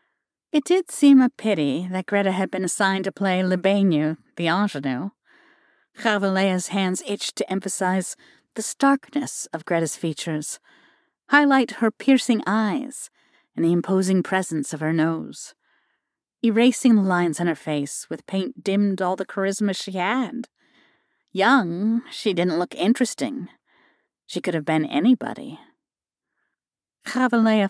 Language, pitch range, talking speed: English, 175-250 Hz, 135 wpm